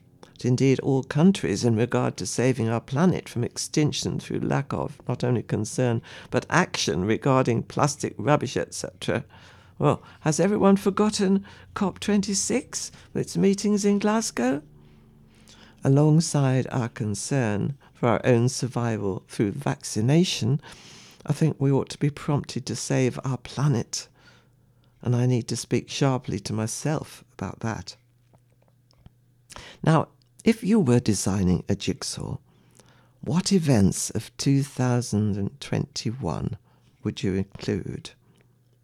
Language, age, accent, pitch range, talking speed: English, 60-79, British, 120-150 Hz, 120 wpm